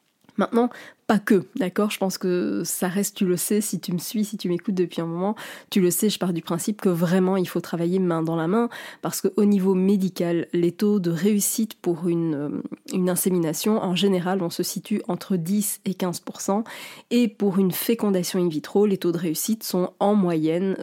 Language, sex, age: French, female, 20-39